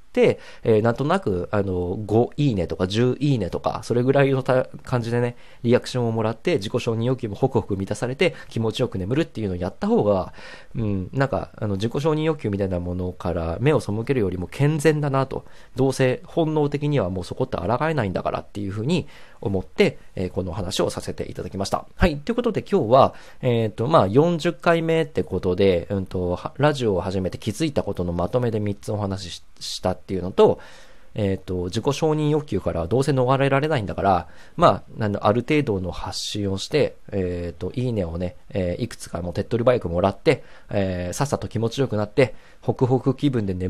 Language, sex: Japanese, male